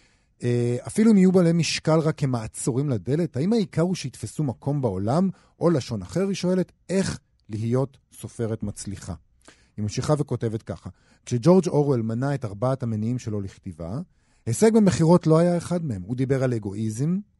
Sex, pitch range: male, 110-150 Hz